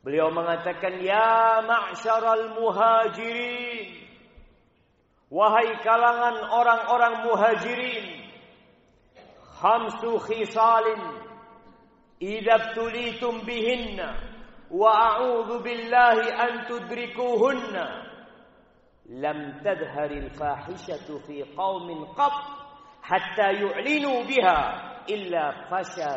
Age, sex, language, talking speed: 50-69, male, Indonesian, 65 wpm